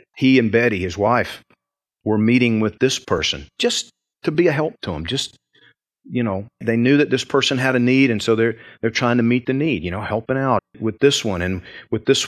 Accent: American